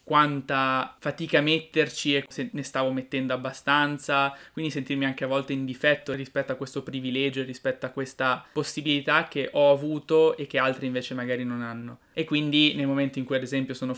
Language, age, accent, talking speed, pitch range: Italian, 20-39, native, 185 wpm, 130-140 Hz